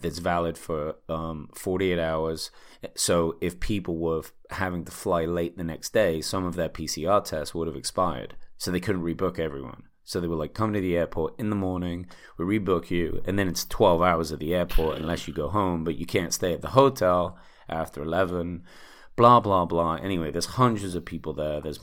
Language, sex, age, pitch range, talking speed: English, male, 30-49, 85-95 Hz, 205 wpm